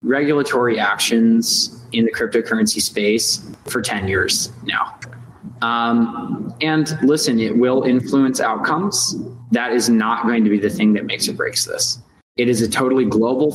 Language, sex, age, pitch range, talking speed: English, male, 20-39, 115-135 Hz, 155 wpm